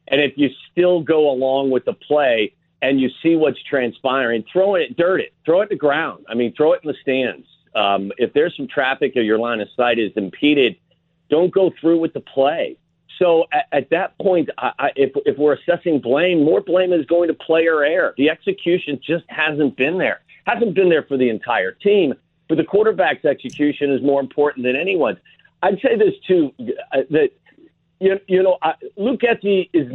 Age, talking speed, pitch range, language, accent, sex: 50-69, 200 wpm, 125-165 Hz, English, American, male